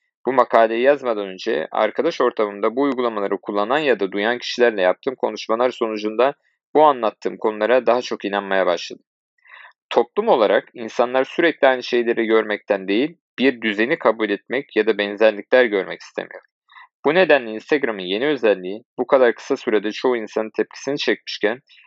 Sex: male